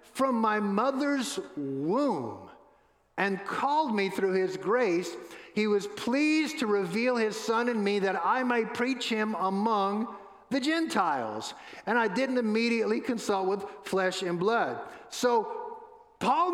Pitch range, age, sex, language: 200-250 Hz, 50-69, male, English